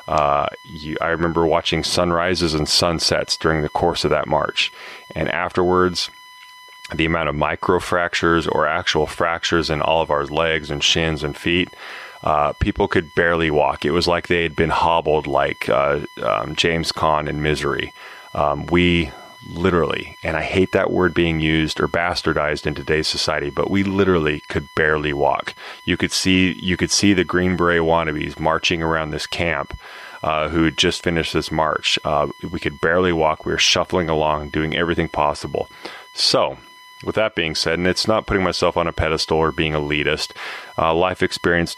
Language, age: English, 30-49